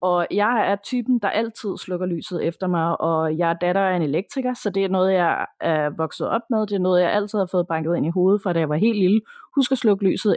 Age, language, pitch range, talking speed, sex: 30-49, Danish, 175-215 Hz, 270 wpm, female